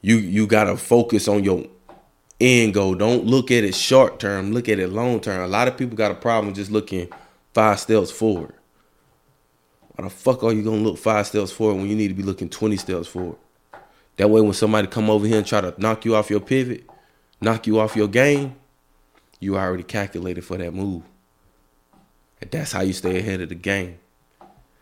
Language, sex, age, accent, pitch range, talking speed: English, male, 20-39, American, 85-110 Hz, 210 wpm